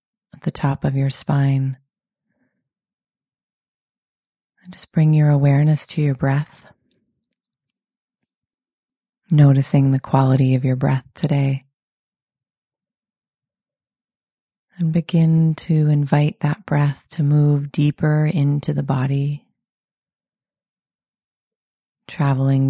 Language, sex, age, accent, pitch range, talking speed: English, female, 30-49, American, 135-155 Hz, 85 wpm